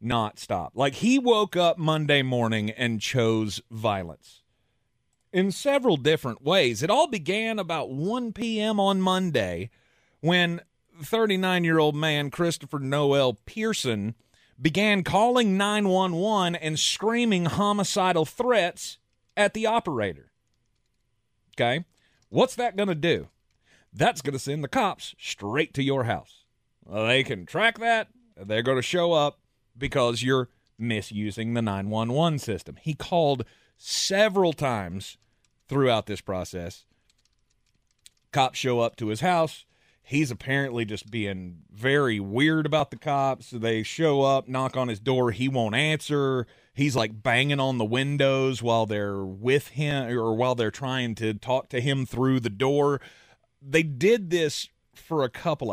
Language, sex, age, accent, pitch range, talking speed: English, male, 40-59, American, 115-160 Hz, 140 wpm